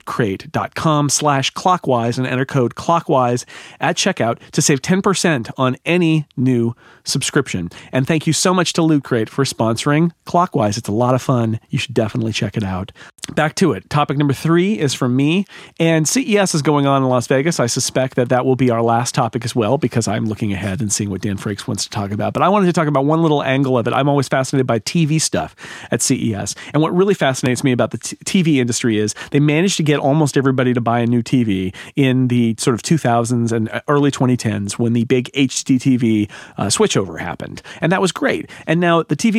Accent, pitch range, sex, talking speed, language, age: American, 120-165 Hz, male, 220 wpm, English, 40-59